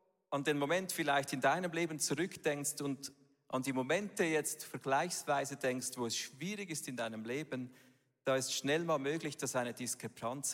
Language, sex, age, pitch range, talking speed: German, male, 40-59, 130-175 Hz, 170 wpm